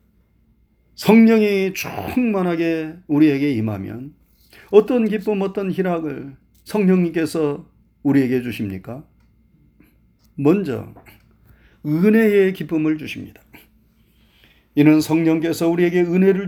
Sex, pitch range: male, 150-190 Hz